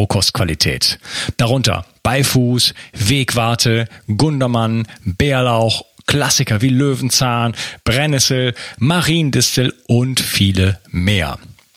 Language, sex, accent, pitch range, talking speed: German, male, German, 105-135 Hz, 70 wpm